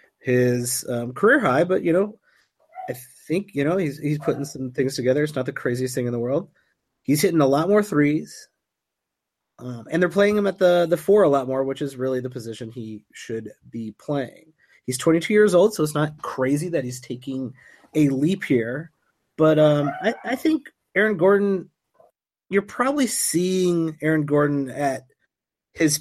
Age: 30-49